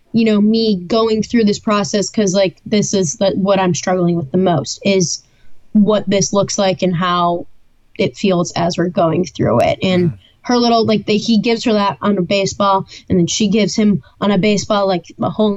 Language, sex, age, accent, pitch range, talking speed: English, female, 10-29, American, 190-225 Hz, 210 wpm